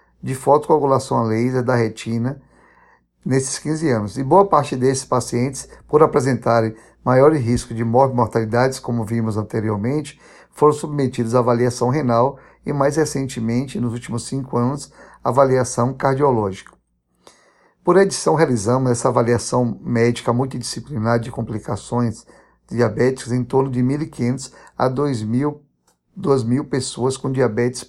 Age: 50-69